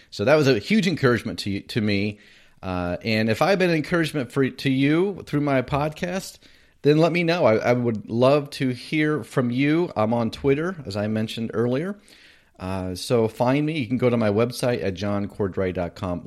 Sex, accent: male, American